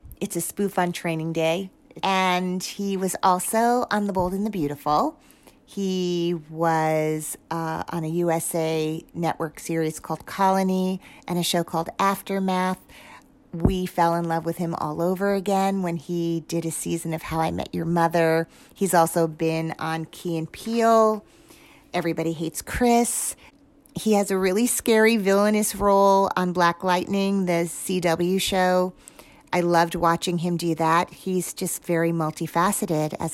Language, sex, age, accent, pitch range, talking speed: English, female, 40-59, American, 165-195 Hz, 155 wpm